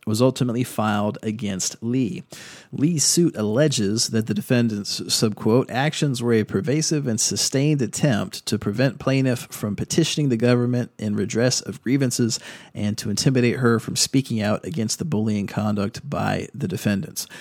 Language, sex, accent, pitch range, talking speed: English, male, American, 105-125 Hz, 150 wpm